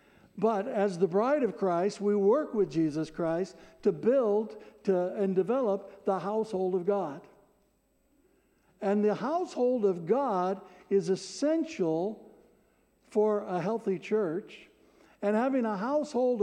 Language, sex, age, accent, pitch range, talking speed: English, male, 60-79, American, 185-230 Hz, 125 wpm